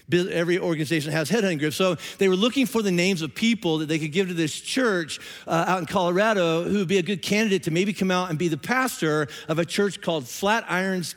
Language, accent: English, American